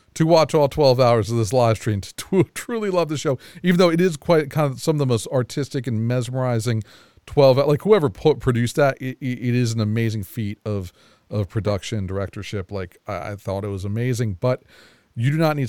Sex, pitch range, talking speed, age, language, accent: male, 110-150 Hz, 220 wpm, 40-59, English, American